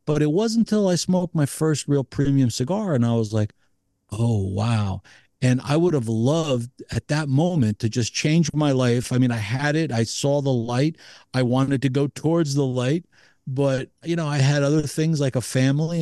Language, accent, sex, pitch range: English, American, male, 115-150 Hz